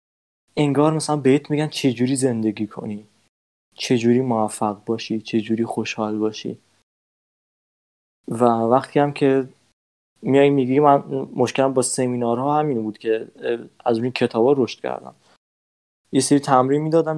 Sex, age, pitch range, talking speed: male, 20-39, 115-150 Hz, 135 wpm